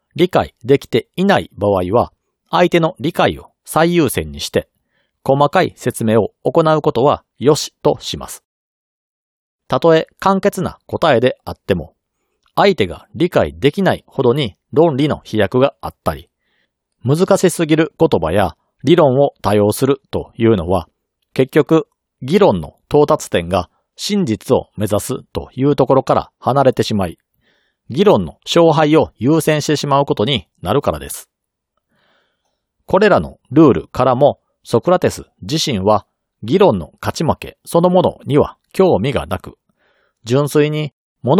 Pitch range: 115-160 Hz